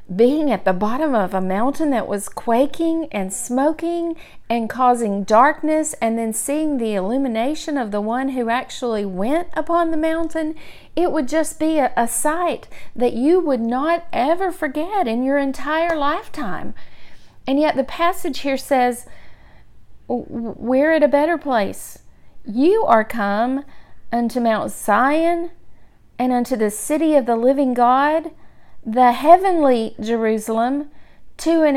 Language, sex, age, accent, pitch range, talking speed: English, female, 40-59, American, 225-310 Hz, 145 wpm